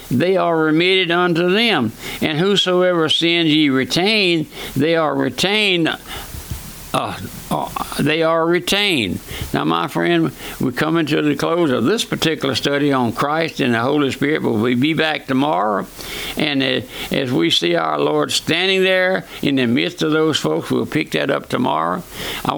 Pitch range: 130-160 Hz